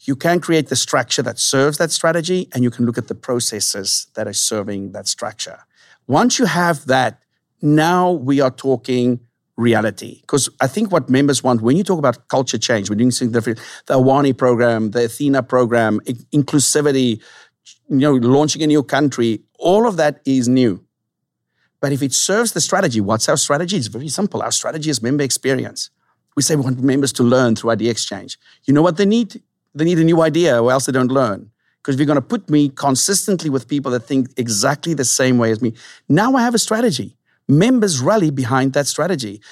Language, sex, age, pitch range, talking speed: English, male, 50-69, 120-155 Hz, 205 wpm